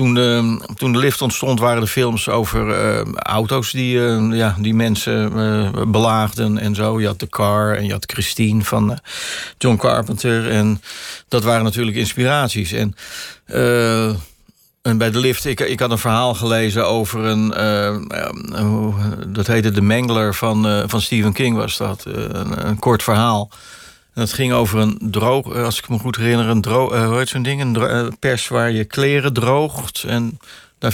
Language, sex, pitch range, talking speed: Dutch, male, 105-120 Hz, 175 wpm